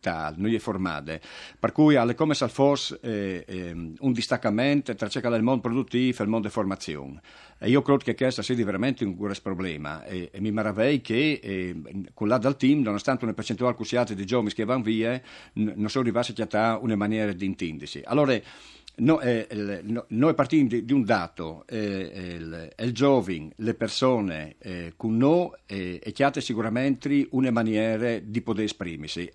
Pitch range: 105-140 Hz